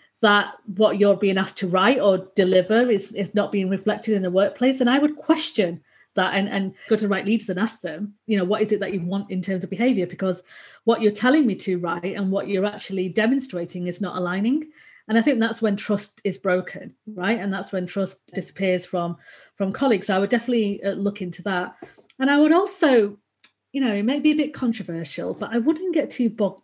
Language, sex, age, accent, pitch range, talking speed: English, female, 40-59, British, 190-235 Hz, 225 wpm